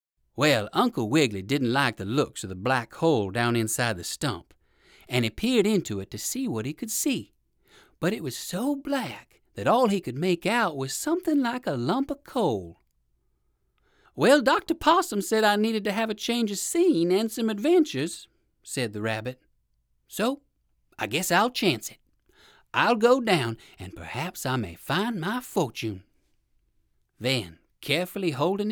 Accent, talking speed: American, 170 wpm